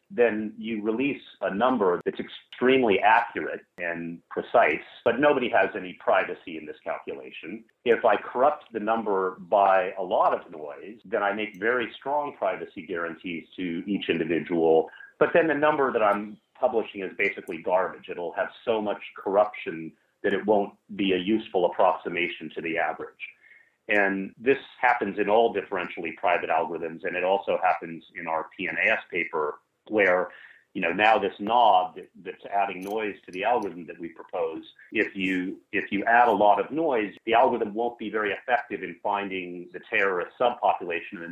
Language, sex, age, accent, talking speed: English, male, 40-59, American, 170 wpm